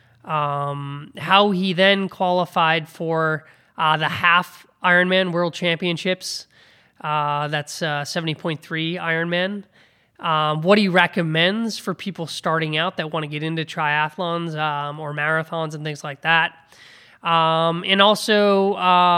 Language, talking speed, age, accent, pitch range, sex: English, 130 wpm, 20-39, American, 150-180 Hz, male